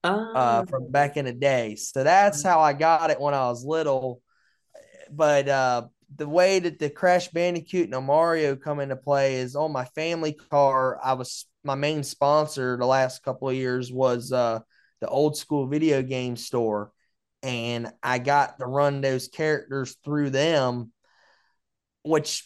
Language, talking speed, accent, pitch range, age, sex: English, 165 wpm, American, 130-150 Hz, 20-39, male